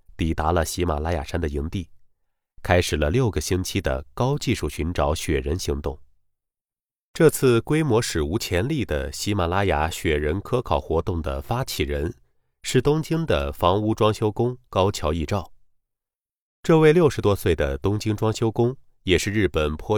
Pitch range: 75-110 Hz